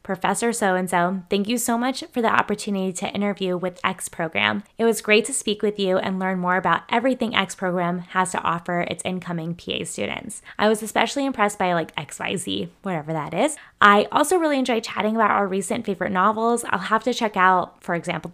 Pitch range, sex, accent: 185-245 Hz, female, American